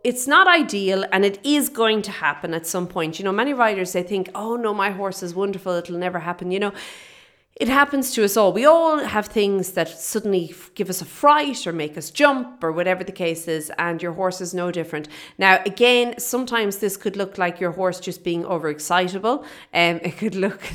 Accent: Irish